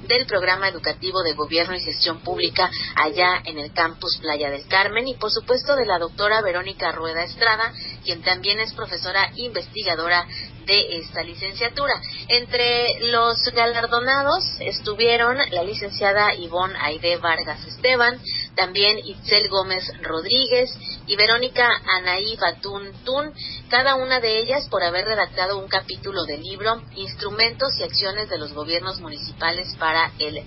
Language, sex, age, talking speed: Spanish, female, 40-59, 140 wpm